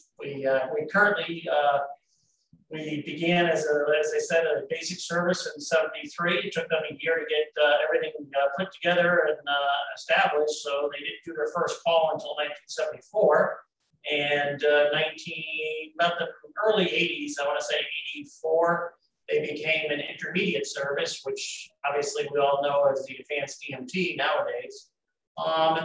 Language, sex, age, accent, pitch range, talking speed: English, male, 40-59, American, 140-170 Hz, 165 wpm